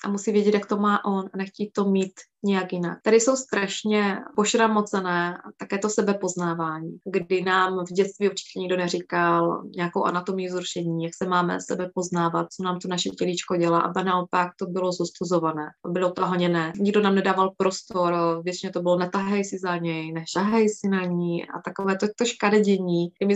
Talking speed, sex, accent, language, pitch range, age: 180 wpm, female, native, Czech, 180-205 Hz, 20-39